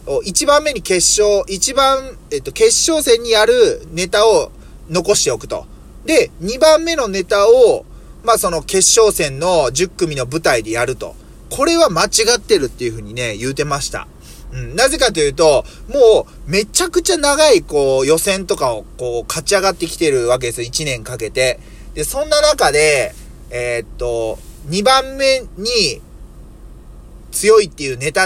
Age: 30-49